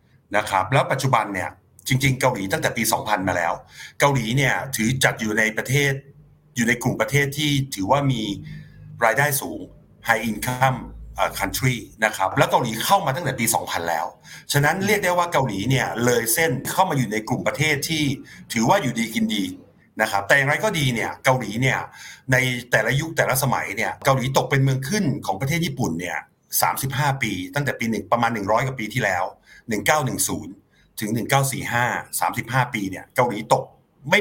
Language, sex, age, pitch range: Thai, male, 60-79, 115-145 Hz